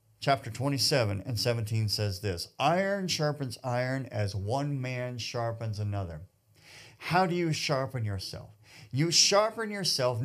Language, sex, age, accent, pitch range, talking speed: English, male, 50-69, American, 120-165 Hz, 130 wpm